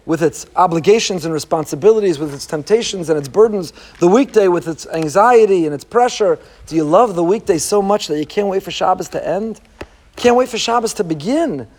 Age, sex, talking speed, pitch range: 40-59, male, 205 wpm, 185-255 Hz